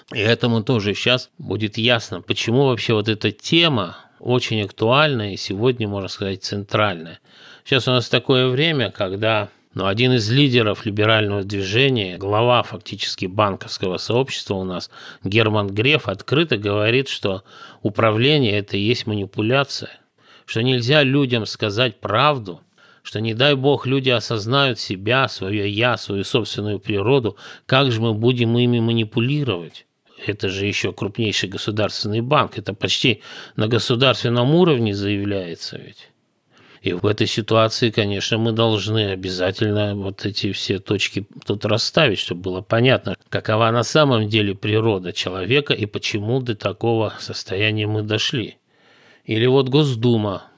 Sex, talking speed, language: male, 140 wpm, Russian